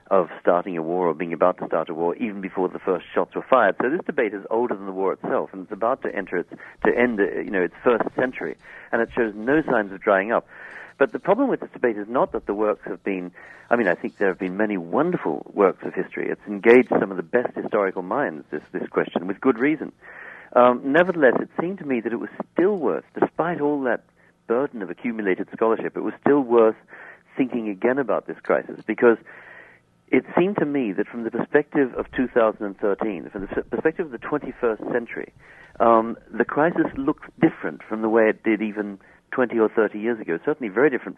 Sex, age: male, 50-69